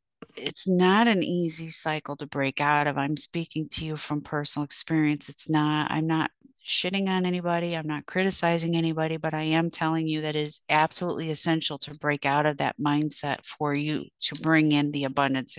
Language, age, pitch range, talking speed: English, 40-59, 155-180 Hz, 190 wpm